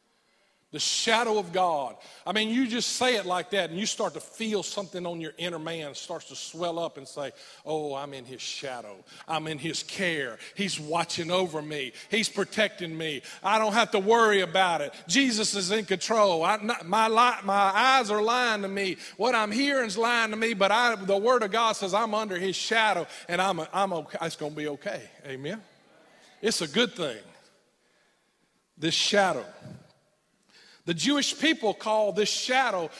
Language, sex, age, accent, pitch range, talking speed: English, male, 40-59, American, 175-230 Hz, 195 wpm